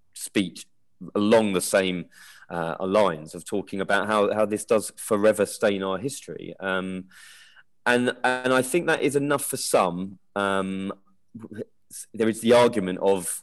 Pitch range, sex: 95-120 Hz, male